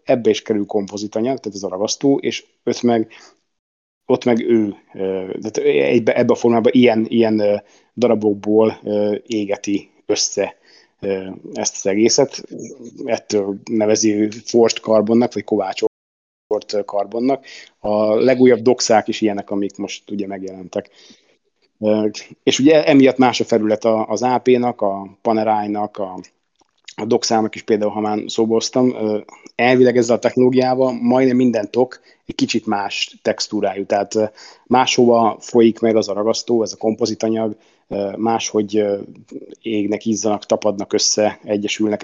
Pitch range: 105-115 Hz